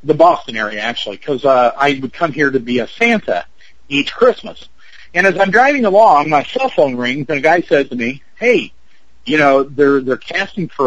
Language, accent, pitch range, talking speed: English, American, 140-205 Hz, 210 wpm